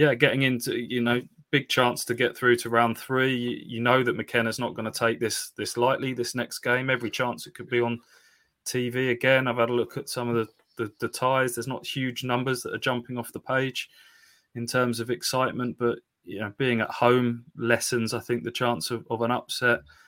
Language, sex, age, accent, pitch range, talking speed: English, male, 20-39, British, 115-140 Hz, 225 wpm